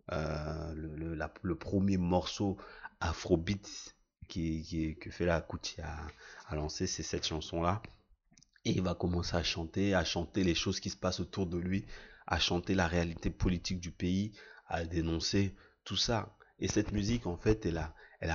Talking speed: 175 wpm